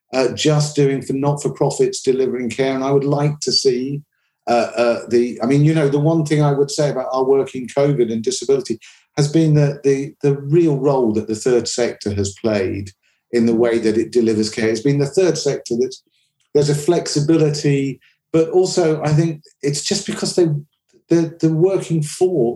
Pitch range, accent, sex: 115-150 Hz, British, male